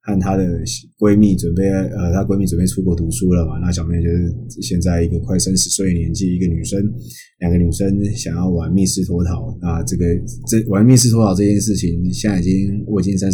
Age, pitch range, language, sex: 20-39, 90-110 Hz, Chinese, male